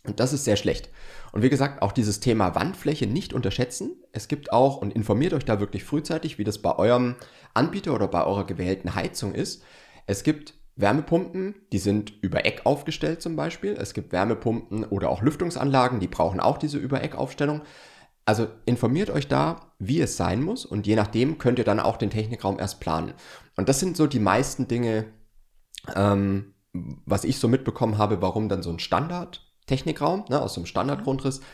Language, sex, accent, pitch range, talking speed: German, male, German, 100-135 Hz, 190 wpm